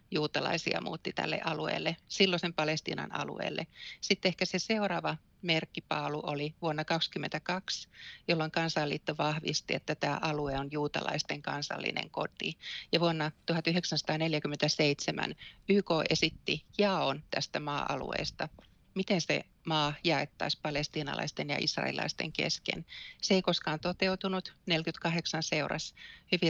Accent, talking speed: native, 105 wpm